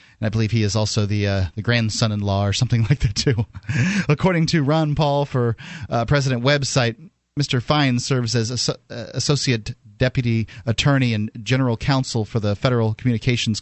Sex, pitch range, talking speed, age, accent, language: male, 115-140 Hz, 165 wpm, 30-49, American, English